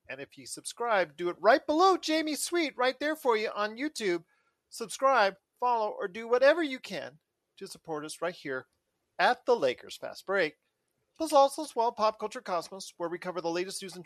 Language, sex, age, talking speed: English, male, 40-59, 200 wpm